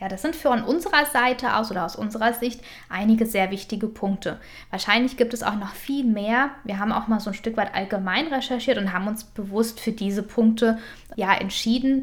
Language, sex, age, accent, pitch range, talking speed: German, female, 10-29, German, 210-255 Hz, 205 wpm